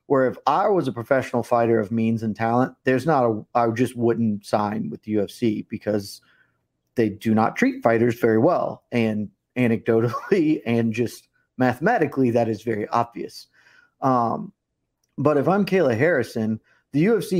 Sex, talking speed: male, 160 wpm